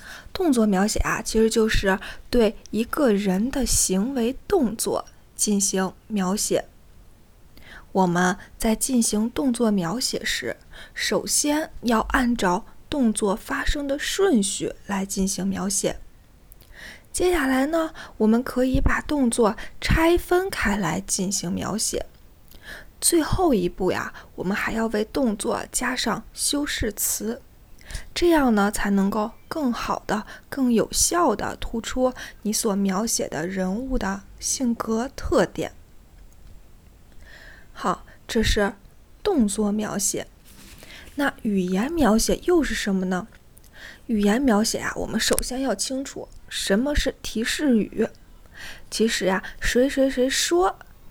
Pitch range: 200-265 Hz